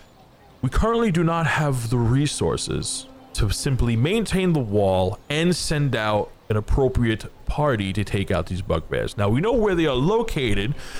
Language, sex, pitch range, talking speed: English, male, 105-150 Hz, 165 wpm